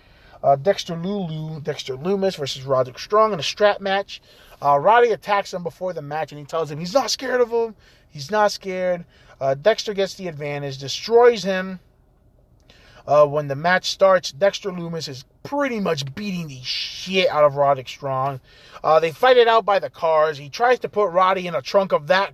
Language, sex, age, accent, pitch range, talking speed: English, male, 20-39, American, 145-205 Hz, 195 wpm